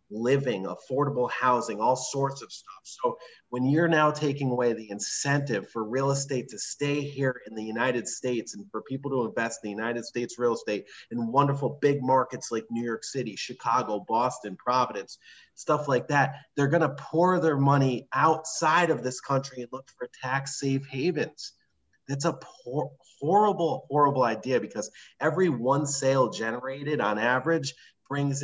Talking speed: 165 wpm